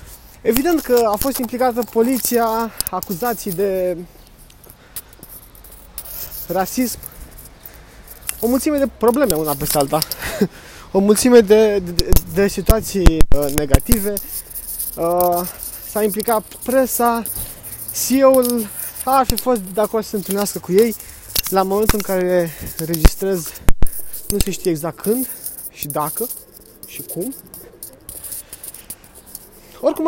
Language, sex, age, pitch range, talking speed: Romanian, male, 20-39, 160-235 Hz, 105 wpm